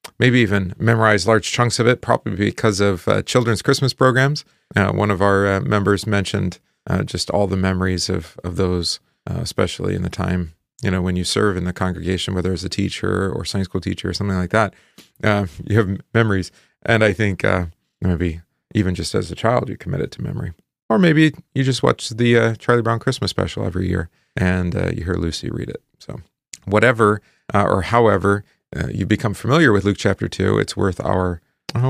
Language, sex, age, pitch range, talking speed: English, male, 40-59, 90-115 Hz, 205 wpm